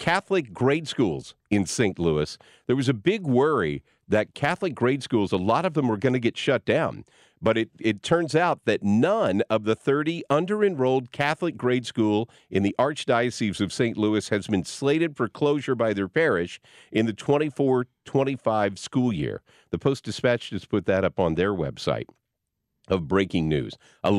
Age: 50-69